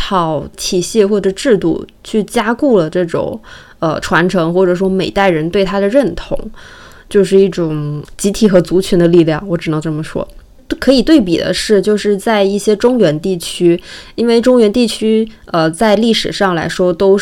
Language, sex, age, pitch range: Chinese, female, 20-39, 175-215 Hz